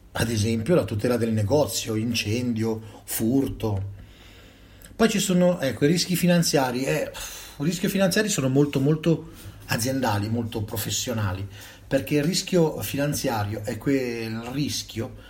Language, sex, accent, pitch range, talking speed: Italian, male, native, 100-135 Hz, 130 wpm